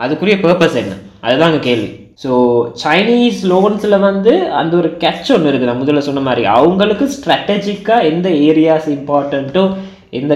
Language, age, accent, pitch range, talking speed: Tamil, 20-39, native, 135-195 Hz, 140 wpm